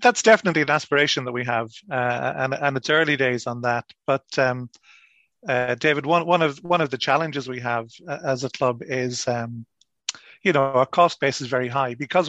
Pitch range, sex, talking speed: 125-140 Hz, male, 205 wpm